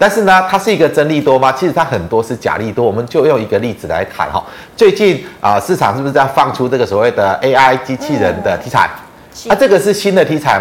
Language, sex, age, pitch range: Chinese, male, 30-49, 120-180 Hz